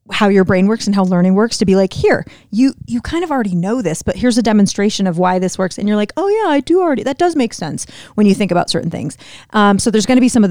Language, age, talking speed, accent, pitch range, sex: English, 30-49, 305 wpm, American, 190-235 Hz, female